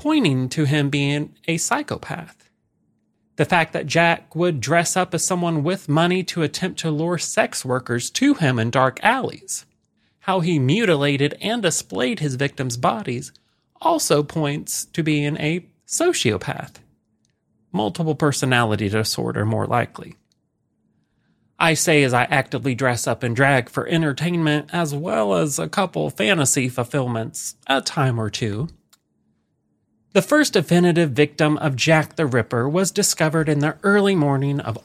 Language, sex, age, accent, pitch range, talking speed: English, male, 30-49, American, 125-165 Hz, 145 wpm